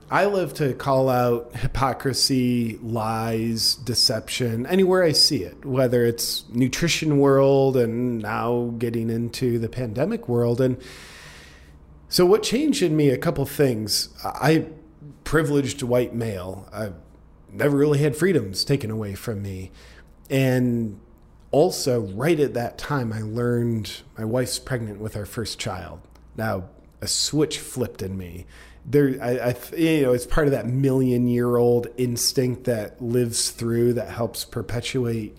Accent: American